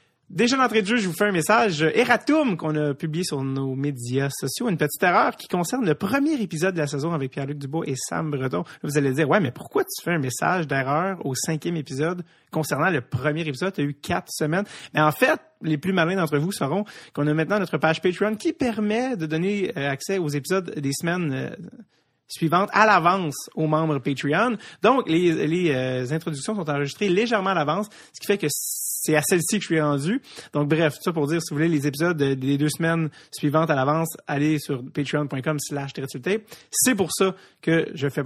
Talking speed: 210 wpm